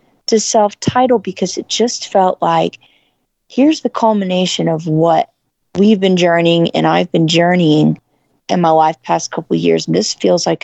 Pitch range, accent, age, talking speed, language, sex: 165-190 Hz, American, 30-49, 170 wpm, English, female